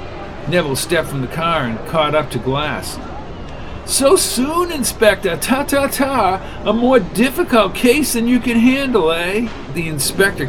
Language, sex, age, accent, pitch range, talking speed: English, male, 50-69, American, 145-210 Hz, 145 wpm